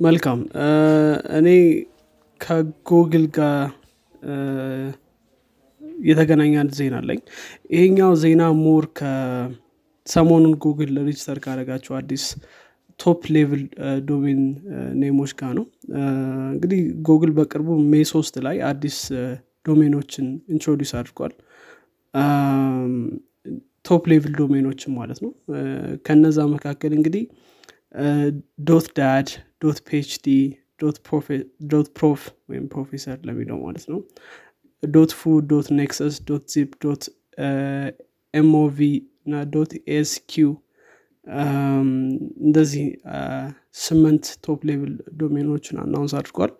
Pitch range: 140-160 Hz